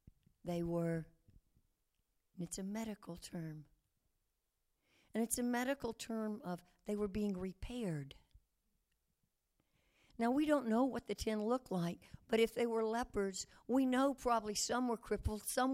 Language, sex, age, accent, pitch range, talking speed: English, female, 60-79, American, 200-260 Hz, 140 wpm